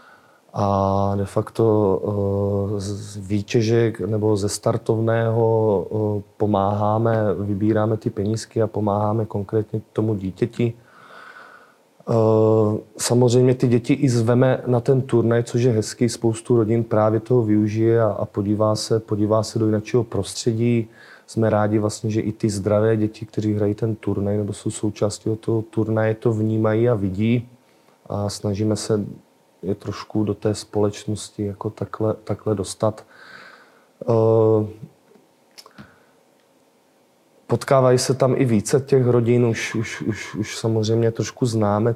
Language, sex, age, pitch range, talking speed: Czech, male, 30-49, 105-115 Hz, 125 wpm